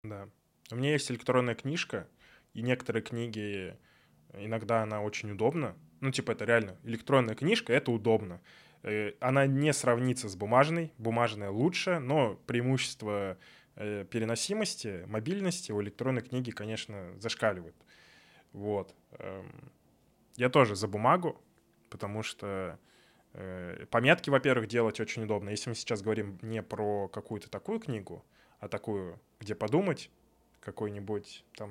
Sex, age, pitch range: male, 10-29, 105-130 Hz